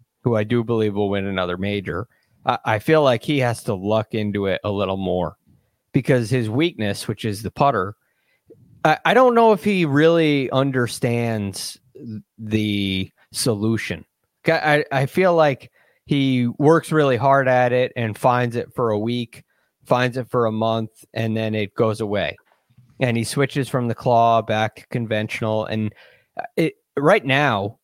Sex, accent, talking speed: male, American, 165 wpm